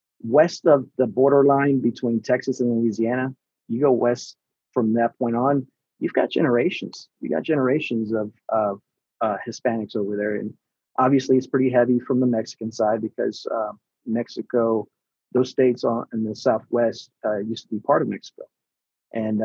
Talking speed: 160 wpm